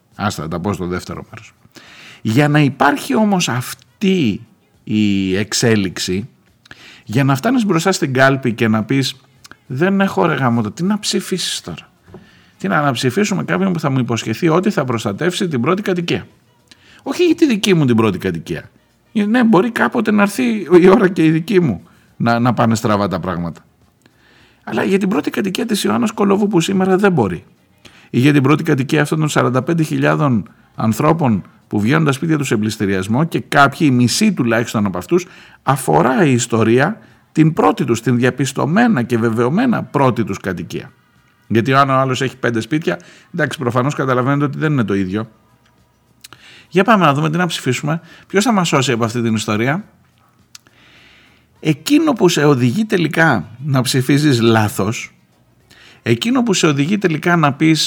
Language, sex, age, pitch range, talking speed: Greek, male, 50-69, 120-180 Hz, 165 wpm